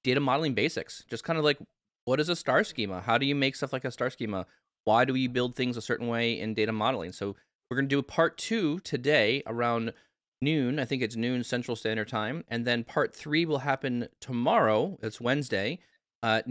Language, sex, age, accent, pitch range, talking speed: English, male, 20-39, American, 110-135 Hz, 215 wpm